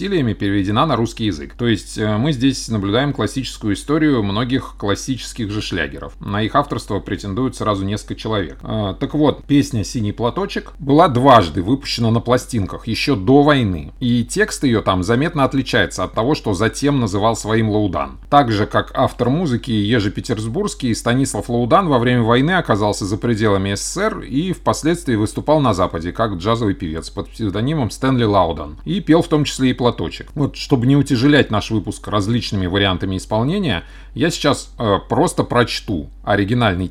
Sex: male